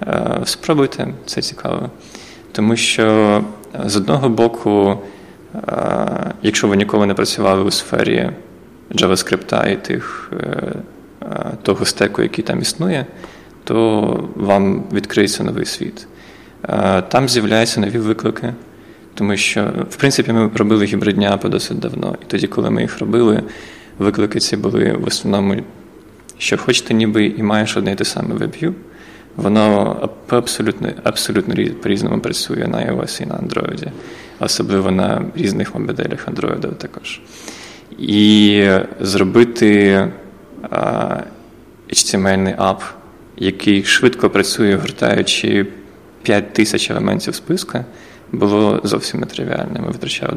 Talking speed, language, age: 115 wpm, Ukrainian, 20-39